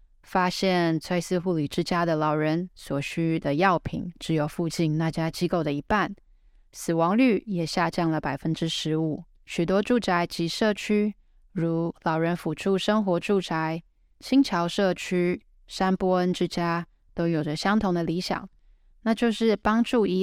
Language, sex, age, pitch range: Chinese, female, 10-29, 165-195 Hz